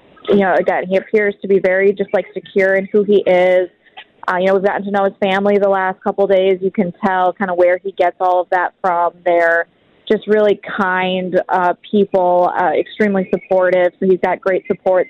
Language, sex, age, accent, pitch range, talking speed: English, female, 20-39, American, 185-210 Hz, 220 wpm